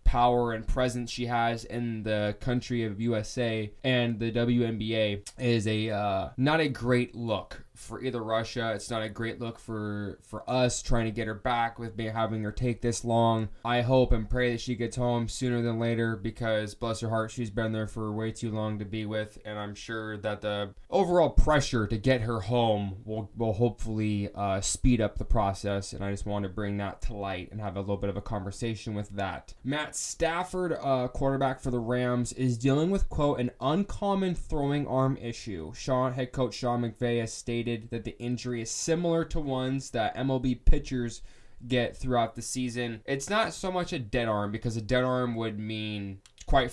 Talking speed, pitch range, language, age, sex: 200 wpm, 110-125 Hz, English, 20-39, male